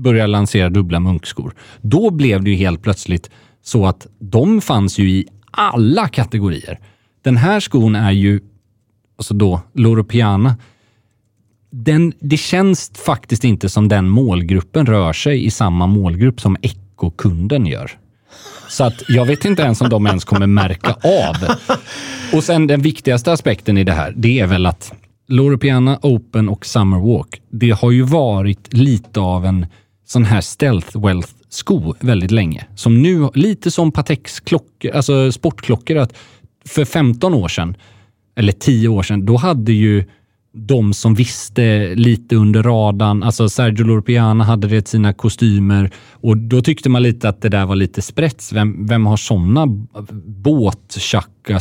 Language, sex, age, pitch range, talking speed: English, male, 30-49, 100-125 Hz, 160 wpm